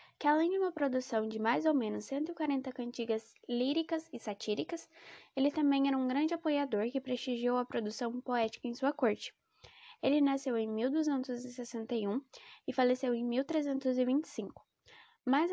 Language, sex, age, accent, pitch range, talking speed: Portuguese, female, 10-29, Brazilian, 230-310 Hz, 145 wpm